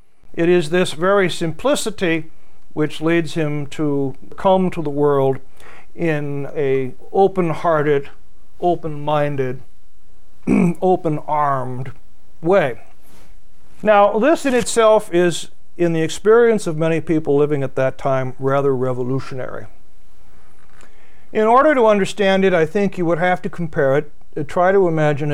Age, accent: 60-79, American